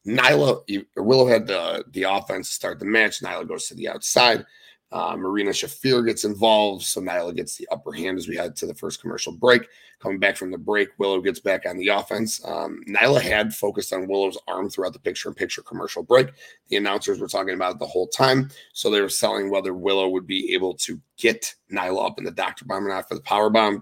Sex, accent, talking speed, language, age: male, American, 230 wpm, English, 30-49